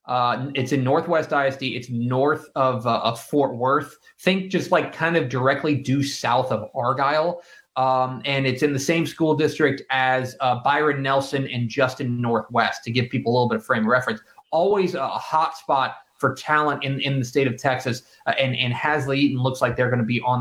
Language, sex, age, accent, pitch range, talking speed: English, male, 30-49, American, 130-190 Hz, 205 wpm